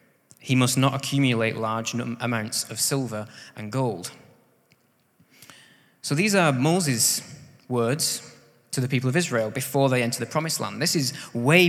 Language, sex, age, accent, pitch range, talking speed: English, male, 20-39, British, 115-145 Hz, 150 wpm